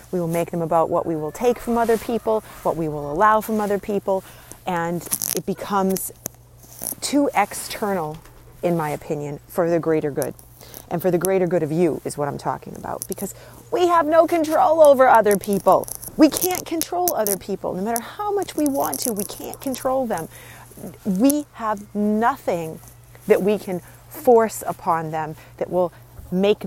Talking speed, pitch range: 180 wpm, 165-220 Hz